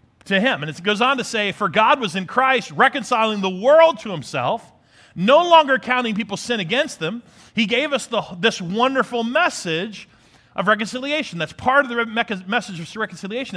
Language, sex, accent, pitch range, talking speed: English, male, American, 150-245 Hz, 180 wpm